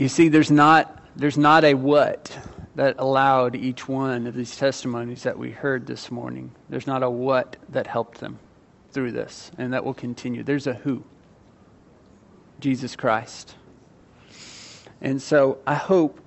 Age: 40-59